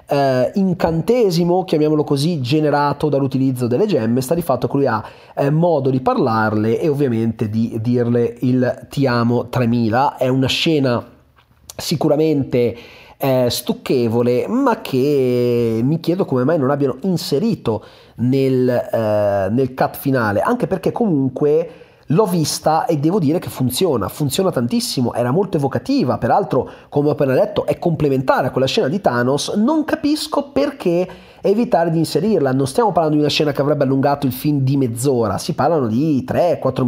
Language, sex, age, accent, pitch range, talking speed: Italian, male, 30-49, native, 125-165 Hz, 155 wpm